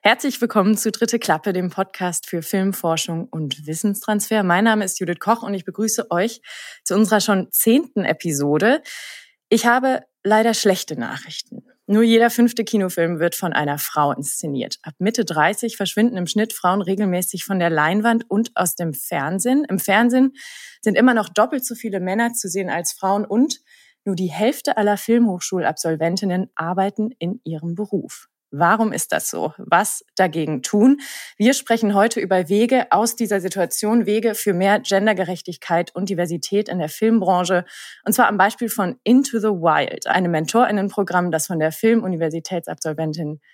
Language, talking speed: German, 160 wpm